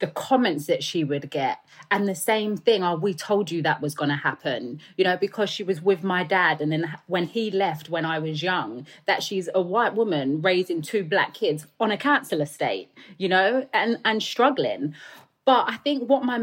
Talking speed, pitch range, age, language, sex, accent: 215 wpm, 180-245 Hz, 30-49, English, female, British